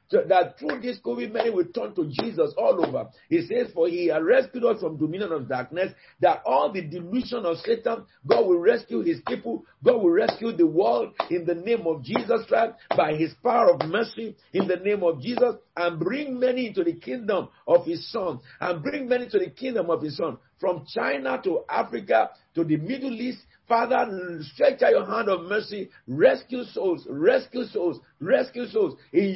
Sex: male